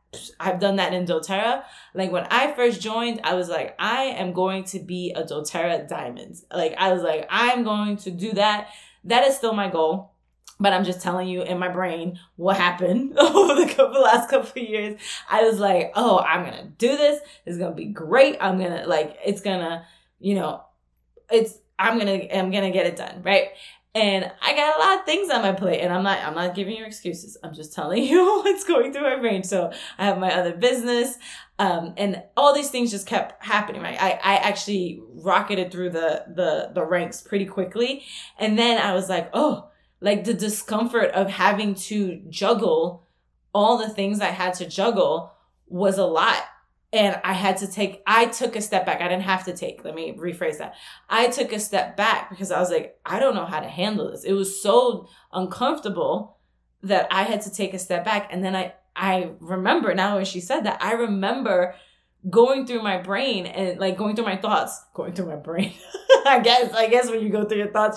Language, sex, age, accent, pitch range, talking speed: English, female, 20-39, American, 185-230 Hz, 210 wpm